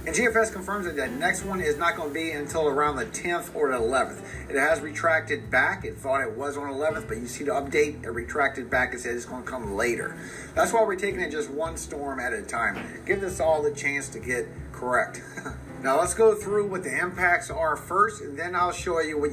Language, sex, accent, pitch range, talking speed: English, male, American, 140-200 Hz, 240 wpm